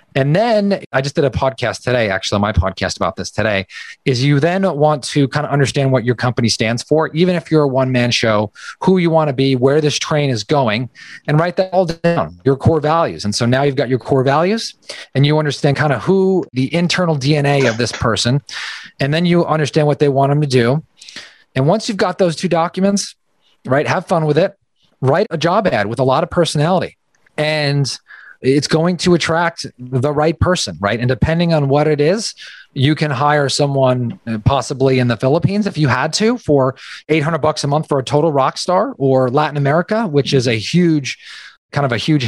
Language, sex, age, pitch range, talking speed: English, male, 30-49, 125-165 Hz, 215 wpm